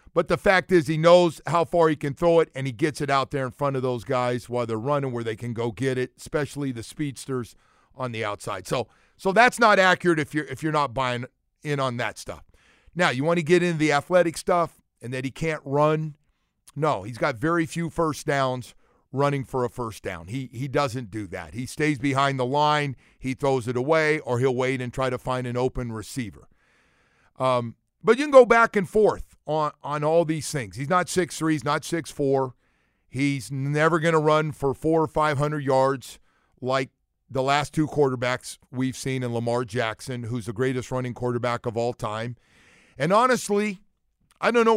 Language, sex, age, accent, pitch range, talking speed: English, male, 50-69, American, 125-170 Hz, 210 wpm